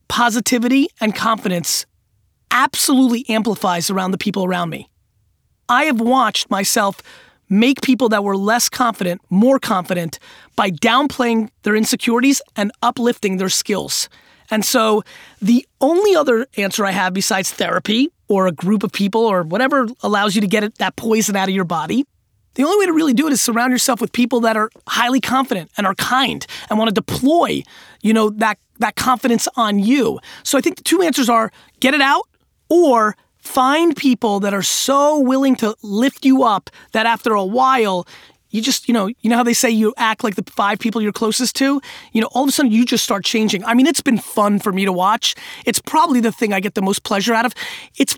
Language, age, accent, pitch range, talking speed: English, 30-49, American, 210-260 Hz, 200 wpm